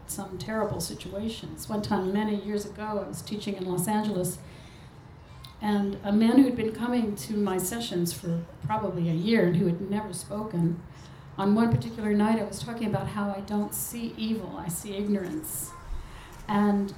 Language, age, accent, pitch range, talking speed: English, 60-79, American, 180-215 Hz, 175 wpm